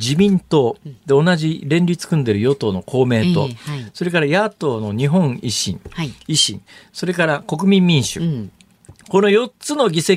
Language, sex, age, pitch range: Japanese, male, 50-69, 145-215 Hz